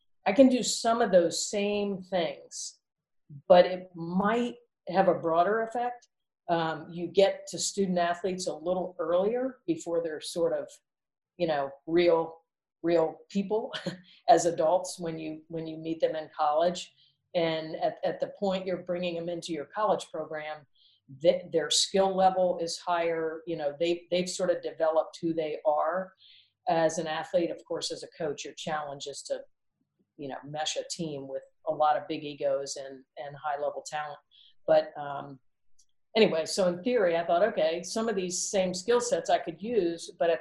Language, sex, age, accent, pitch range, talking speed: English, female, 50-69, American, 155-195 Hz, 175 wpm